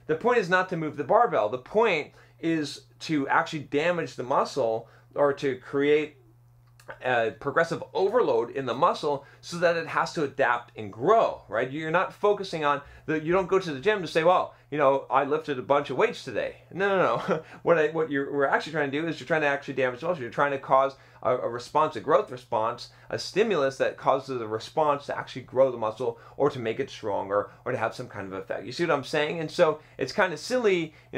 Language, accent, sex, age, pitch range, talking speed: English, American, male, 30-49, 130-160 Hz, 235 wpm